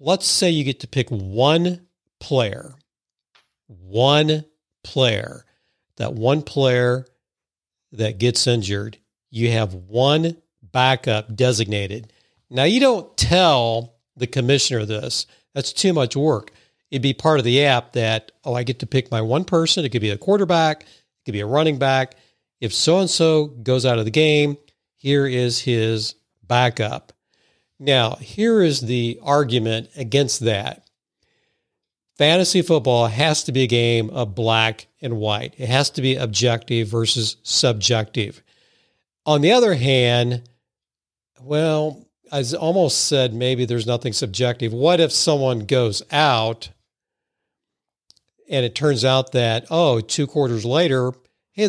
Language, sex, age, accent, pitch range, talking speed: English, male, 50-69, American, 115-155 Hz, 140 wpm